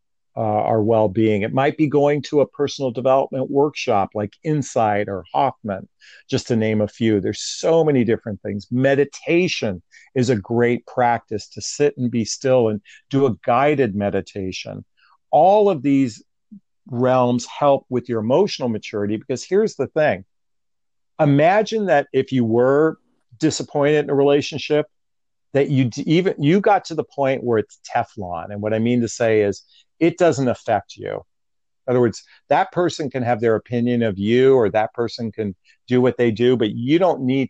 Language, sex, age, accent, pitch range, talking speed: English, male, 50-69, American, 110-140 Hz, 175 wpm